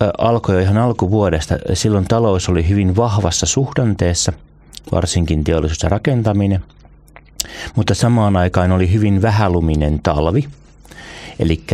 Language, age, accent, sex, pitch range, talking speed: Finnish, 30-49, native, male, 80-100 Hz, 110 wpm